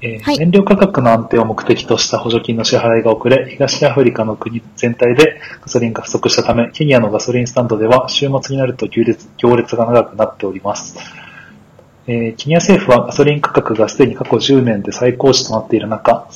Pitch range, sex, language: 115-145 Hz, male, Japanese